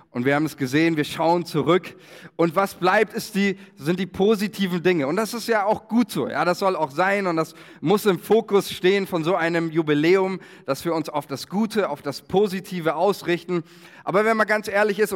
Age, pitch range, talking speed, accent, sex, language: 30-49, 155-190 Hz, 220 wpm, German, male, German